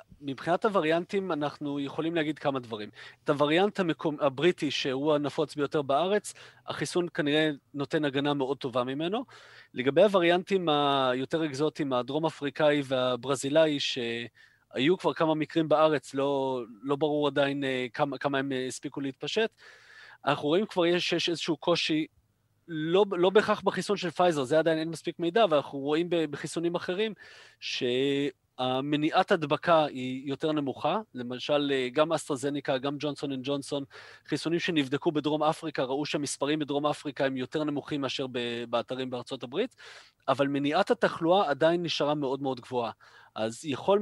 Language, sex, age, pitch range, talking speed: Hebrew, male, 30-49, 135-165 Hz, 145 wpm